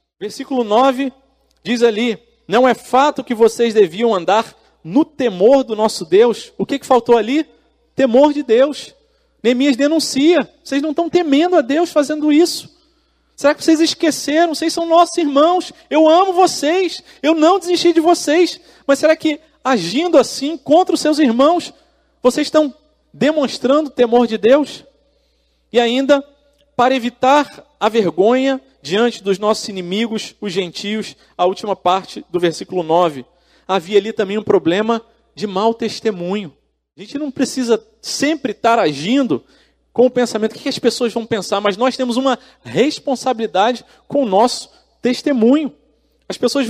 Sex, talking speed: male, 150 wpm